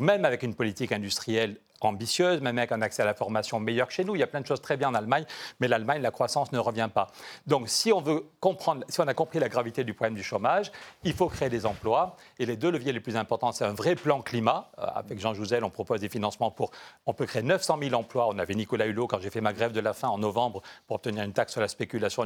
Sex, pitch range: male, 115-140 Hz